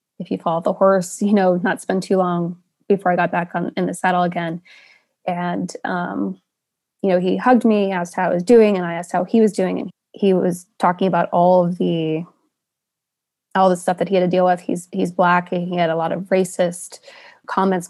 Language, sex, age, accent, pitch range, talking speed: English, female, 20-39, American, 175-195 Hz, 225 wpm